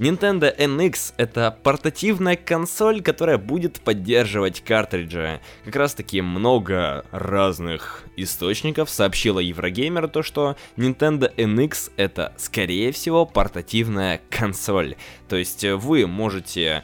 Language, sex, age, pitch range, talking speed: Russian, male, 20-39, 90-115 Hz, 105 wpm